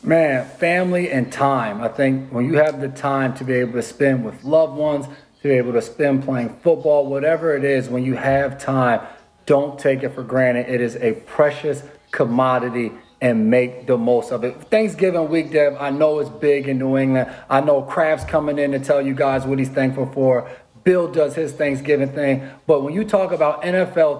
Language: English